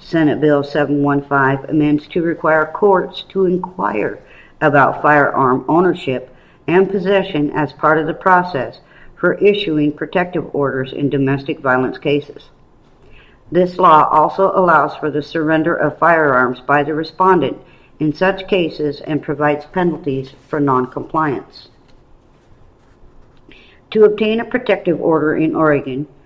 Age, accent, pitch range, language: 50-69, American, 140-175 Hz, English